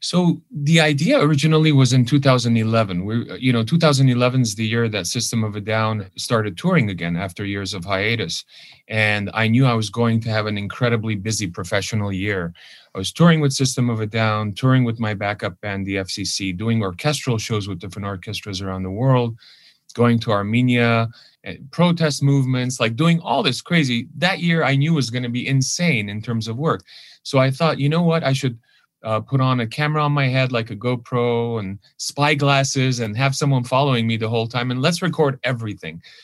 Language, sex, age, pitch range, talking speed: English, male, 30-49, 110-145 Hz, 195 wpm